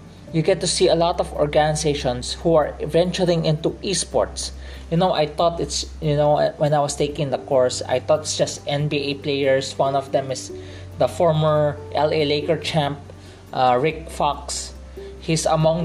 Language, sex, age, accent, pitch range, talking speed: English, male, 20-39, Filipino, 120-165 Hz, 175 wpm